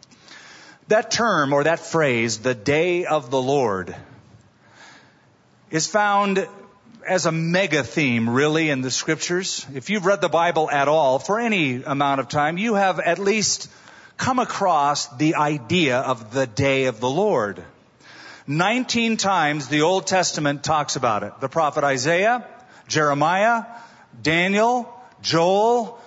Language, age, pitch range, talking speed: English, 40-59, 145-195 Hz, 140 wpm